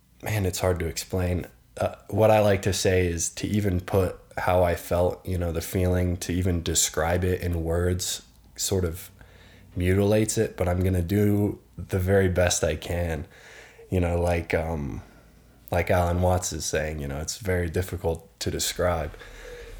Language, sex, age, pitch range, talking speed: English, male, 20-39, 85-100 Hz, 175 wpm